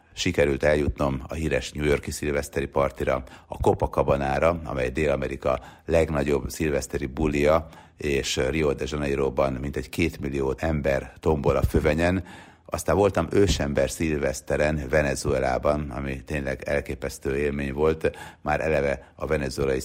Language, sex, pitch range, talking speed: Hungarian, male, 70-80 Hz, 120 wpm